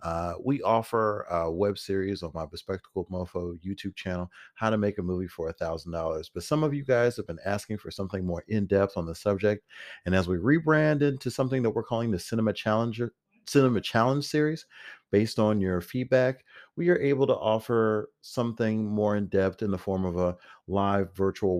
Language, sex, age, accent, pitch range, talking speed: English, male, 40-59, American, 95-125 Hz, 190 wpm